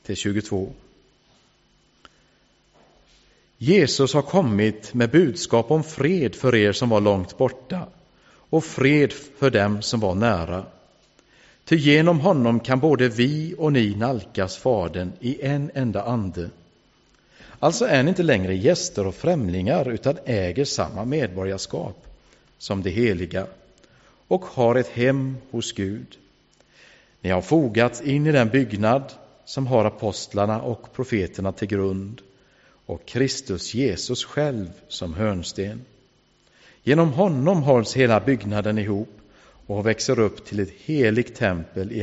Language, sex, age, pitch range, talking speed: English, male, 50-69, 100-135 Hz, 130 wpm